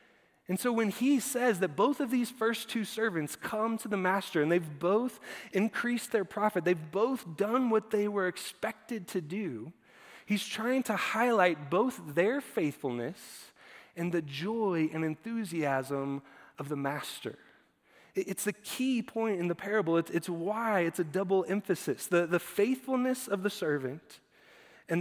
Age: 20-39